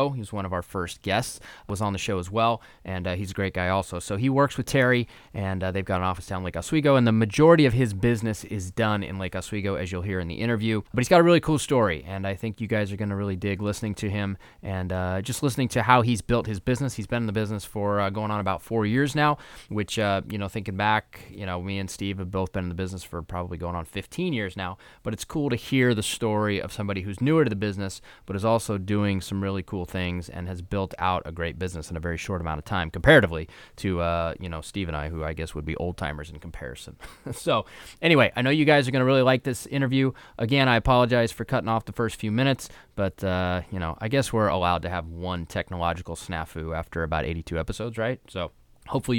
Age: 20-39